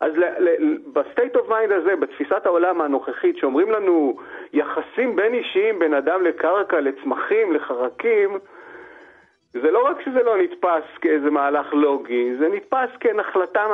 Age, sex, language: 40-59, male, Hebrew